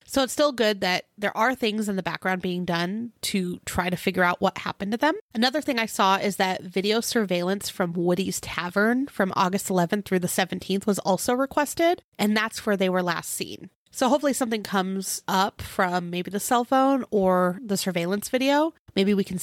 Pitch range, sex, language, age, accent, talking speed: 185-235 Hz, female, English, 30-49, American, 205 wpm